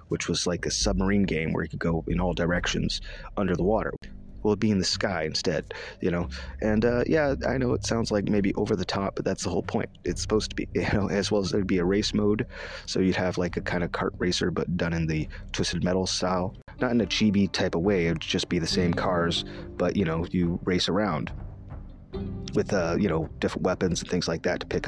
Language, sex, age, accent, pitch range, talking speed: English, male, 30-49, American, 85-105 Hz, 250 wpm